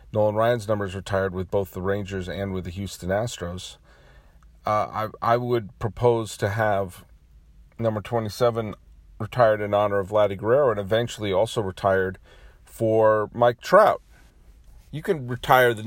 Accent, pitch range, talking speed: American, 100-120 Hz, 150 wpm